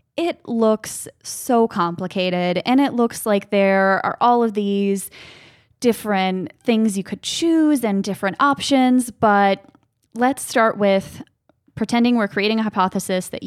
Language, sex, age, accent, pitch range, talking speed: English, female, 10-29, American, 180-215 Hz, 140 wpm